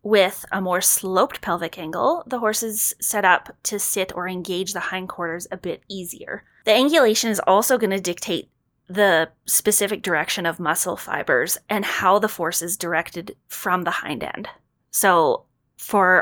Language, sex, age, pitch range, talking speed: English, female, 20-39, 175-220 Hz, 165 wpm